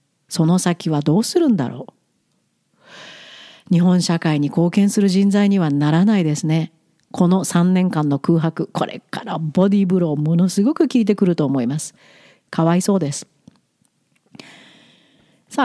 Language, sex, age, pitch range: Japanese, female, 50-69, 170-250 Hz